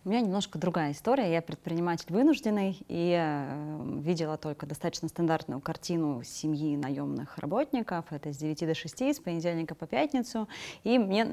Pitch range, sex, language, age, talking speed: 160-195 Hz, female, Russian, 20-39, 155 wpm